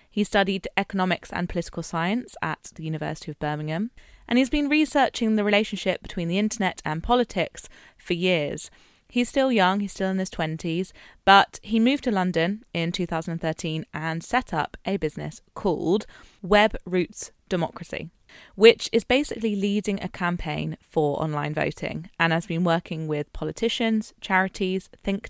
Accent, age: British, 20-39